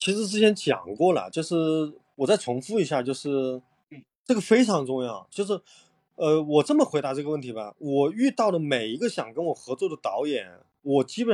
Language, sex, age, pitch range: Chinese, male, 20-39, 140-220 Hz